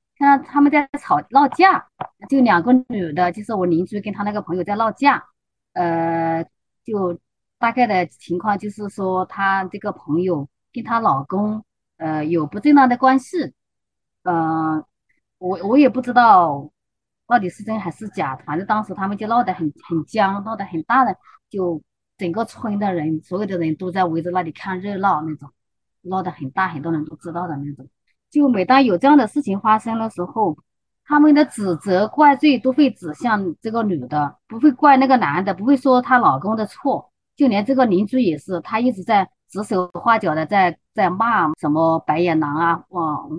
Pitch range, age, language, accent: 165-230 Hz, 30-49, Chinese, native